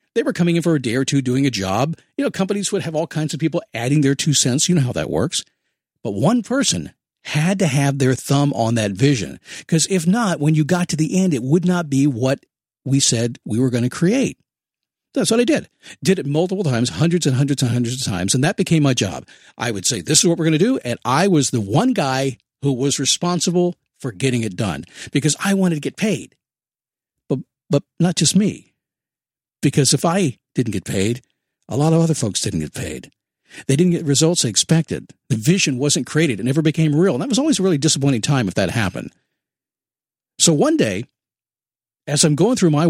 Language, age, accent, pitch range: English, 50-69, American, 130-180 Hz